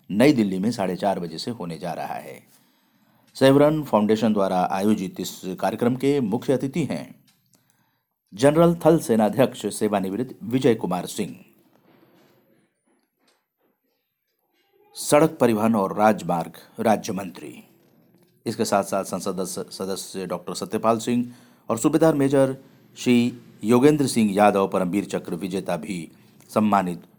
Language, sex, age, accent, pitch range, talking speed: Hindi, male, 50-69, native, 105-135 Hz, 120 wpm